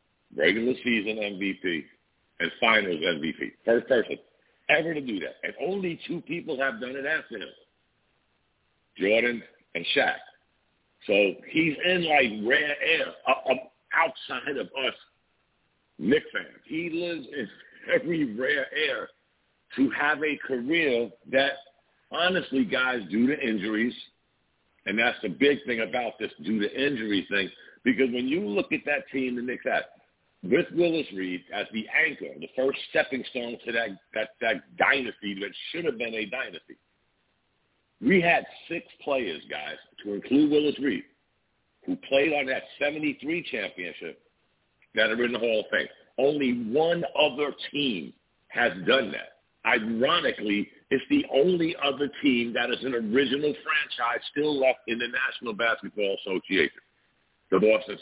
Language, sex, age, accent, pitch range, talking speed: English, male, 50-69, American, 115-165 Hz, 145 wpm